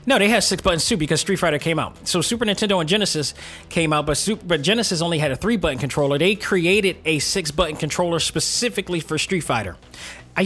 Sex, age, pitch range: male, 20-39, 145-180 Hz